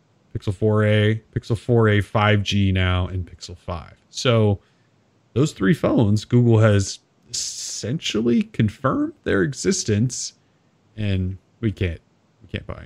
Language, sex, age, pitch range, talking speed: English, male, 30-49, 95-125 Hz, 115 wpm